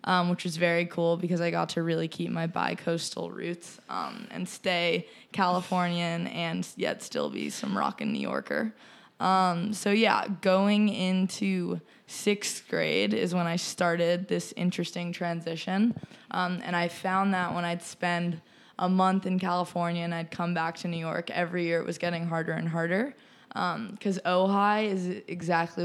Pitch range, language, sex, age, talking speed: 170-195 Hz, English, female, 20-39, 165 wpm